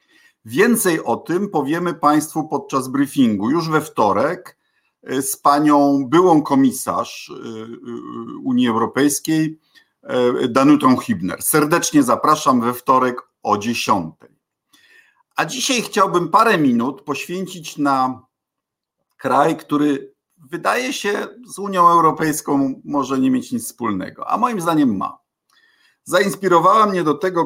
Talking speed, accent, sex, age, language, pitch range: 110 wpm, native, male, 50-69, Polish, 130-185 Hz